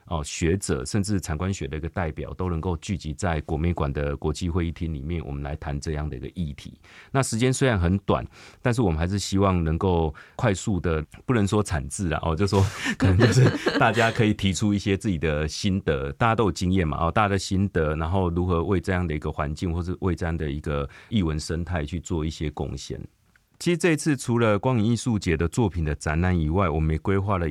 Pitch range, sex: 80-100 Hz, male